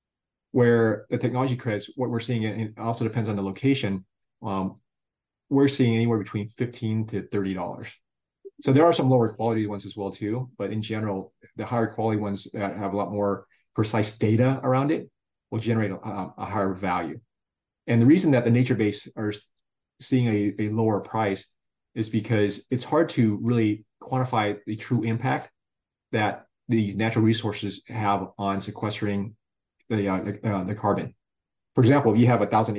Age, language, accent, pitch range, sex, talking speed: 30-49, English, American, 100-120 Hz, male, 175 wpm